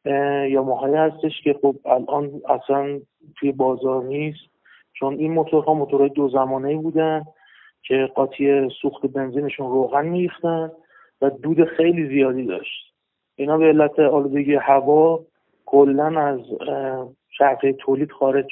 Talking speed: 125 wpm